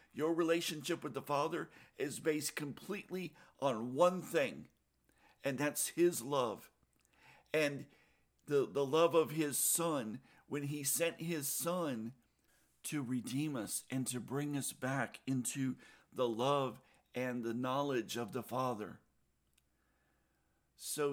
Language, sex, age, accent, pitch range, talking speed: English, male, 50-69, American, 120-145 Hz, 130 wpm